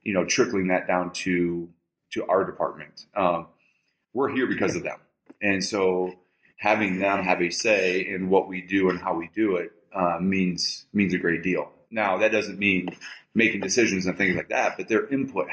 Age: 30-49